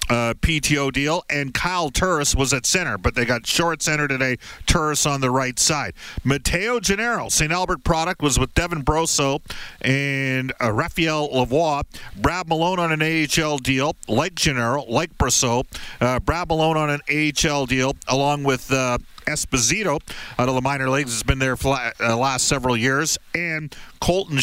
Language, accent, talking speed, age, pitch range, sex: English, American, 170 wpm, 50-69, 130-160 Hz, male